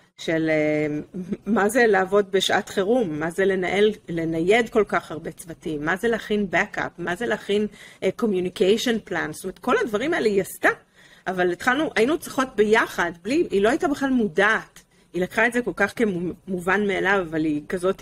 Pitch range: 170-220 Hz